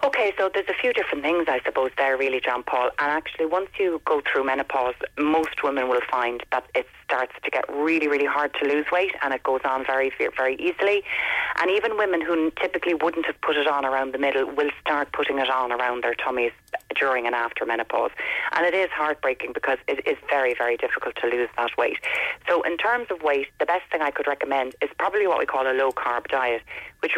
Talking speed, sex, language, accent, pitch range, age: 225 wpm, female, English, Irish, 130-180 Hz, 30-49